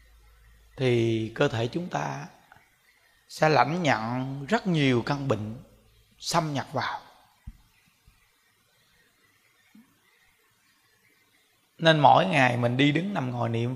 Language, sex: Vietnamese, male